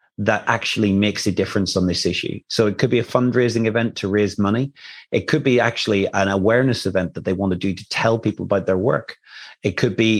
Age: 30-49